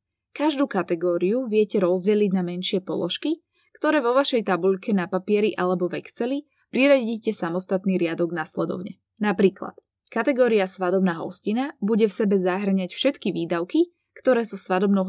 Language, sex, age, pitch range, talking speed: Slovak, female, 20-39, 180-245 Hz, 130 wpm